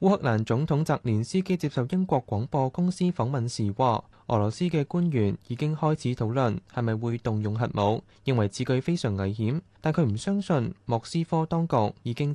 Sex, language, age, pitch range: male, Chinese, 20-39, 110-150 Hz